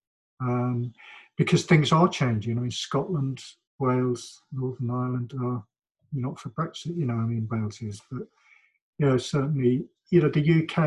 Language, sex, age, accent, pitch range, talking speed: English, male, 50-69, British, 115-140 Hz, 160 wpm